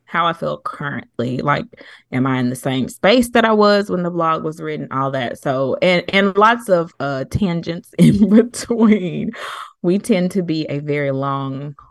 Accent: American